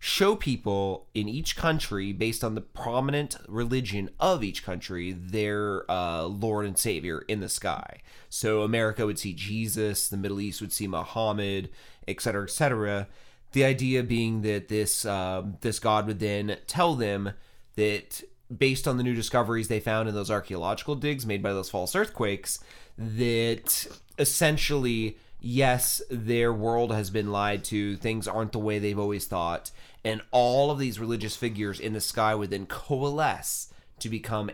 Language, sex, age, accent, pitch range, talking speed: English, male, 30-49, American, 100-120 Hz, 165 wpm